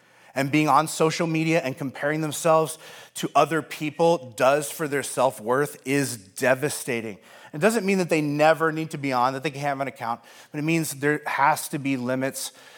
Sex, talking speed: male, 195 wpm